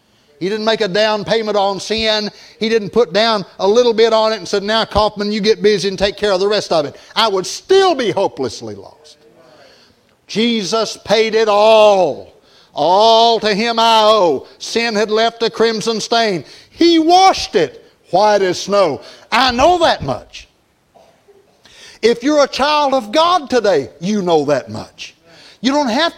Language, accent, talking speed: English, American, 175 wpm